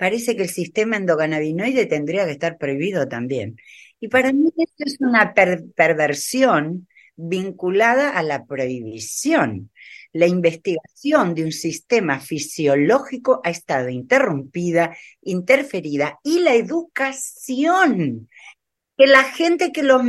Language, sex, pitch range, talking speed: Spanish, female, 170-275 Hz, 115 wpm